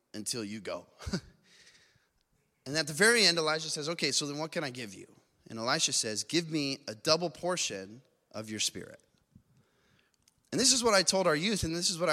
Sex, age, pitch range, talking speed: male, 20-39, 155-205 Hz, 205 wpm